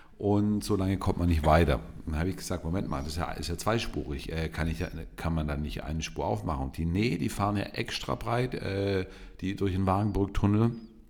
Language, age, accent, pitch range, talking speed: German, 50-69, German, 80-110 Hz, 215 wpm